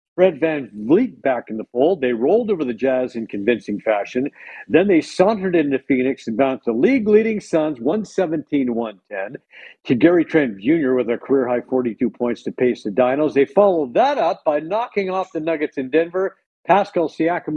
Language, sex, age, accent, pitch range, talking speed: English, male, 50-69, American, 130-165 Hz, 180 wpm